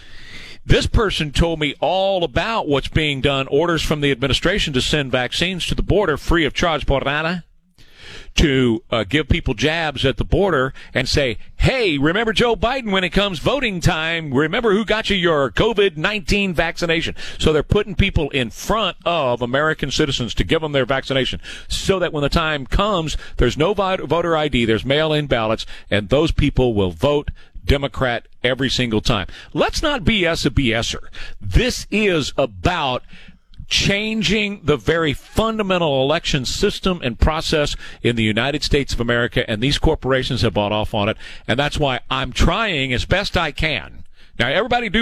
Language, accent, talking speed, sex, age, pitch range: English, American, 170 wpm, male, 40-59, 125-170 Hz